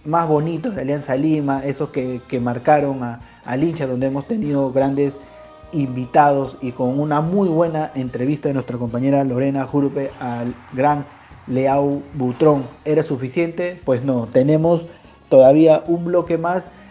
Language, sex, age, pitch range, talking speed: Spanish, male, 40-59, 125-155 Hz, 140 wpm